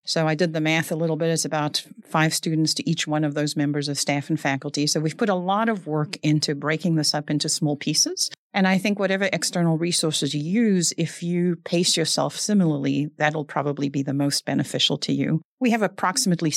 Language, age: English, 40-59